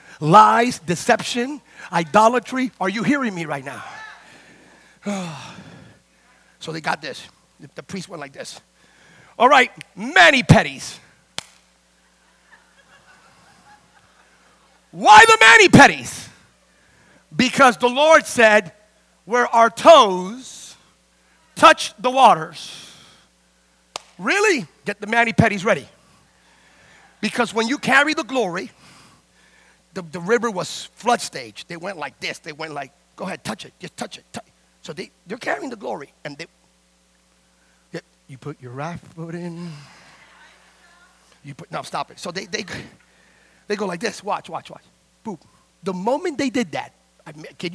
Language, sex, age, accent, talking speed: English, male, 40-59, American, 135 wpm